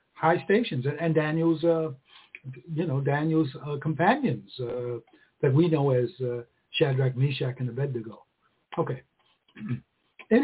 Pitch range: 125-160 Hz